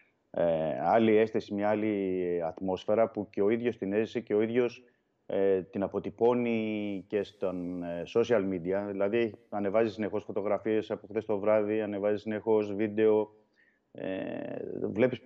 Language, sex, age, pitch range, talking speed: Greek, male, 30-49, 90-110 Hz, 125 wpm